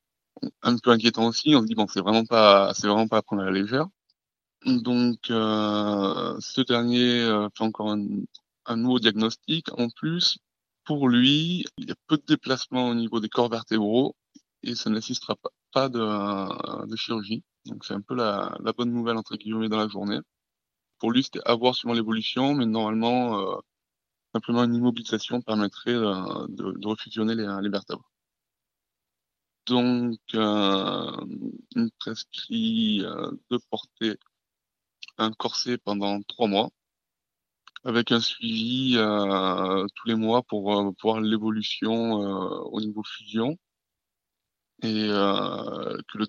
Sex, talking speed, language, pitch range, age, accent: male, 145 wpm, French, 105-120 Hz, 20-39, French